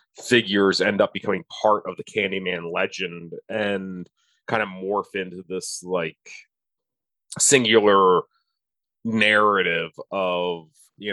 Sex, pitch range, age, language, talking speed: male, 85-120 Hz, 30-49, English, 110 wpm